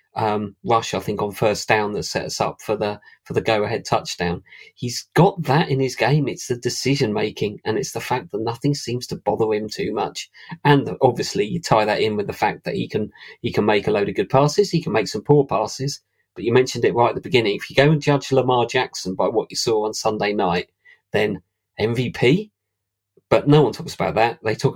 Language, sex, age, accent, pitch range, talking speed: English, male, 40-59, British, 115-155 Hz, 235 wpm